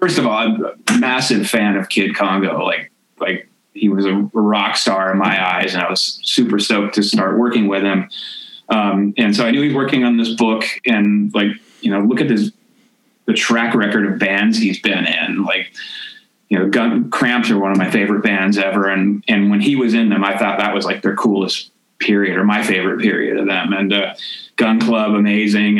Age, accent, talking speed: 30-49, American, 220 wpm